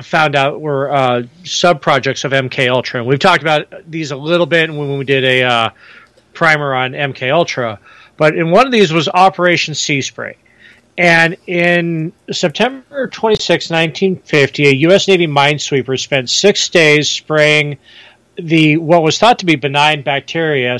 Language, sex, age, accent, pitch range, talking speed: English, male, 40-59, American, 135-180 Hz, 160 wpm